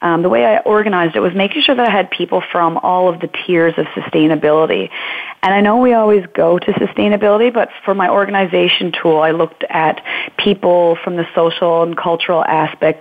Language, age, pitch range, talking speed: English, 30-49, 165-195 Hz, 200 wpm